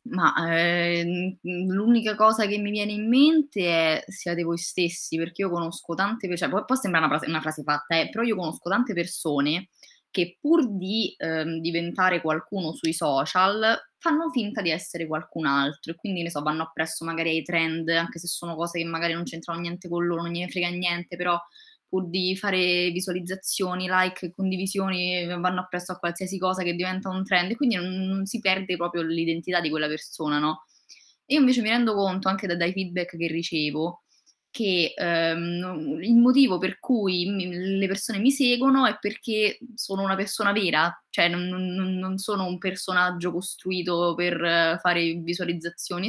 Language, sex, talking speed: Italian, female, 170 wpm